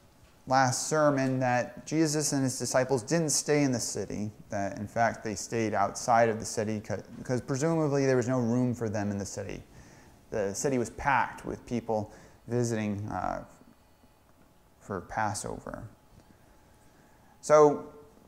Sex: male